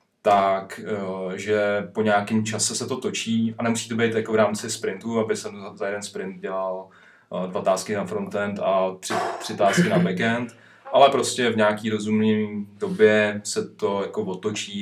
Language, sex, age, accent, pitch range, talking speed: Czech, male, 30-49, native, 95-115 Hz, 170 wpm